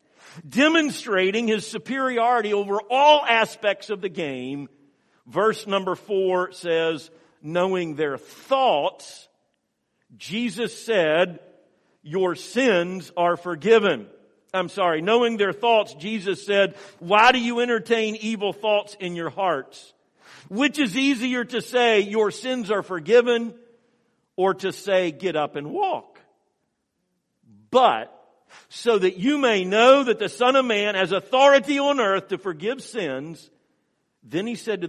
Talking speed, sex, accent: 130 wpm, male, American